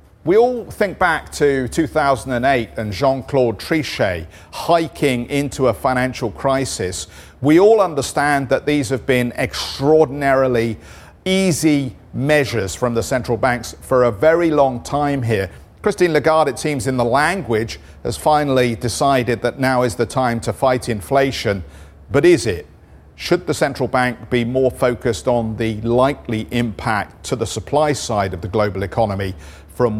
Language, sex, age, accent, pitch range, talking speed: English, male, 50-69, British, 110-145 Hz, 150 wpm